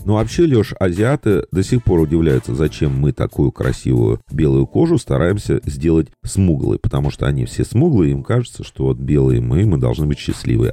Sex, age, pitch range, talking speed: male, 40-59, 75-120 Hz, 180 wpm